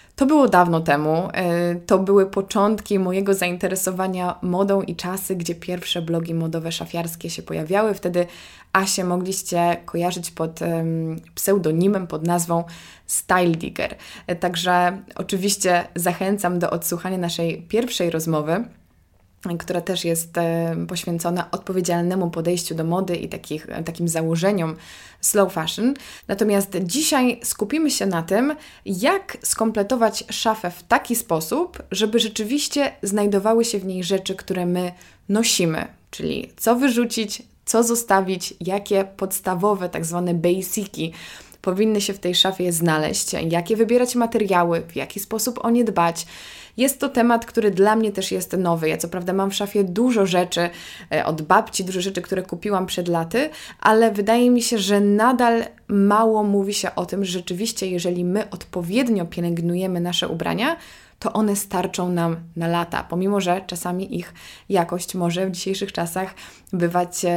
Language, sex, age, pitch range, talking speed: Polish, female, 20-39, 175-210 Hz, 140 wpm